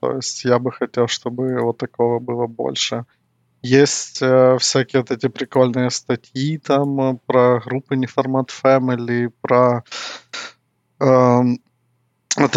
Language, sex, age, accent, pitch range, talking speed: Ukrainian, male, 20-39, native, 120-135 Hz, 120 wpm